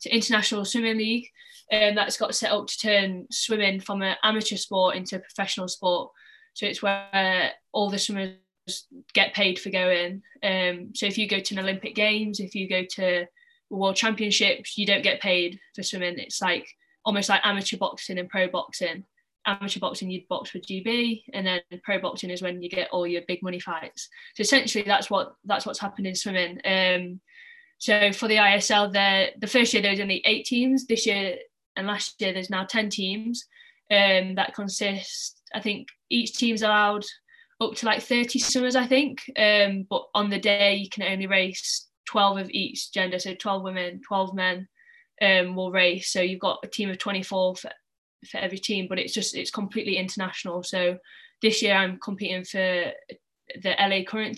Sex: female